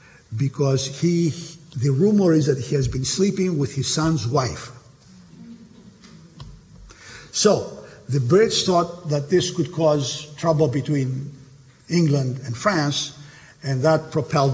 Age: 50-69